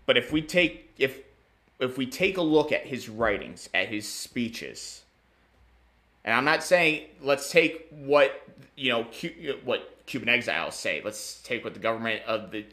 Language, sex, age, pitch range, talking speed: English, male, 30-49, 95-140 Hz, 170 wpm